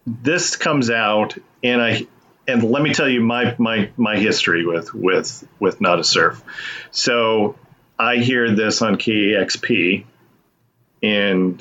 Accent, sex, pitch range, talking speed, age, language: American, male, 95-115 Hz, 140 wpm, 40-59, English